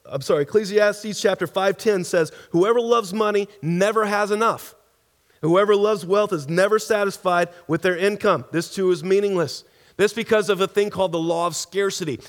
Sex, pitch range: male, 155-205 Hz